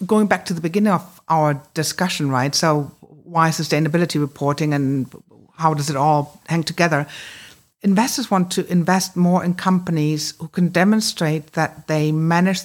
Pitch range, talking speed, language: 150-180 Hz, 155 wpm, English